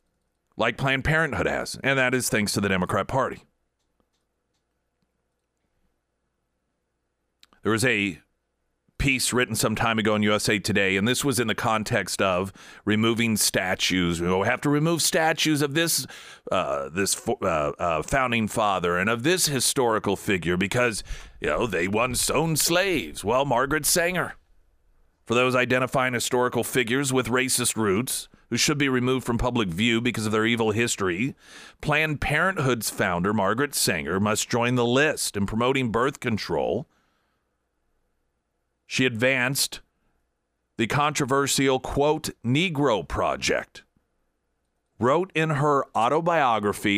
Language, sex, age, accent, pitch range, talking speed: English, male, 40-59, American, 105-145 Hz, 135 wpm